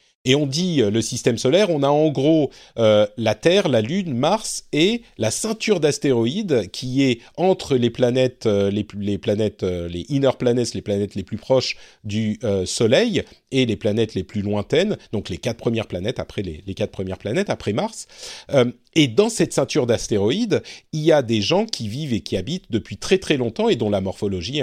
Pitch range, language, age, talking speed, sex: 110-170 Hz, French, 40-59, 200 wpm, male